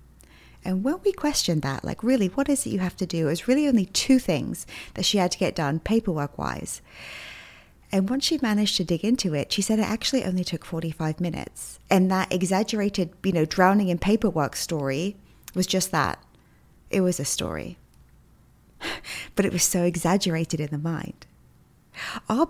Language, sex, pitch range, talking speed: English, female, 170-230 Hz, 185 wpm